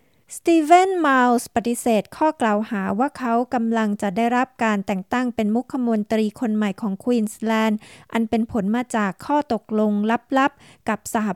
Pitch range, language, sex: 210-245 Hz, Thai, female